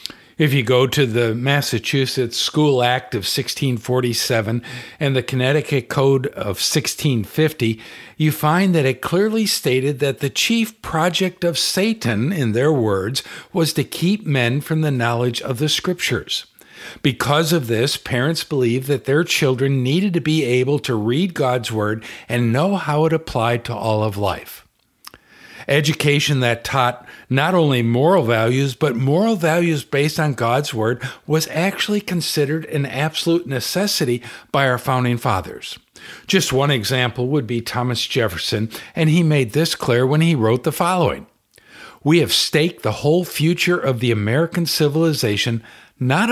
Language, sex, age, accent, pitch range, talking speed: English, male, 60-79, American, 120-160 Hz, 155 wpm